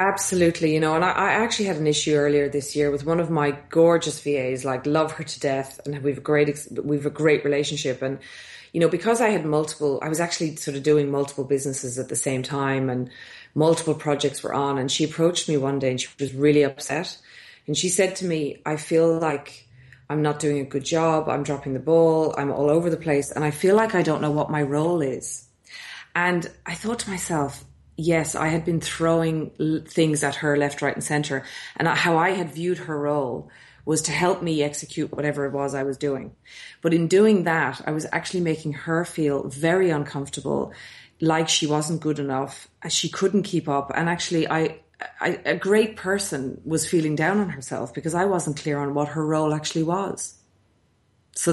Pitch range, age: 145-165 Hz, 30-49